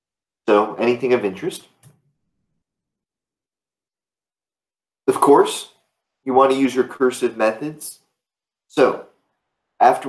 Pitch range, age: 105-125 Hz, 30-49